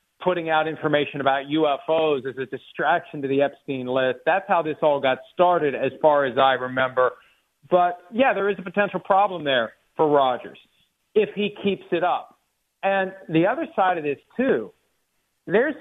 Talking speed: 175 wpm